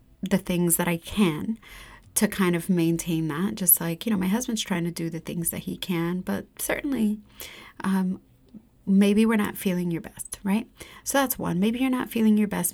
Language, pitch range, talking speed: English, 175-210 Hz, 205 wpm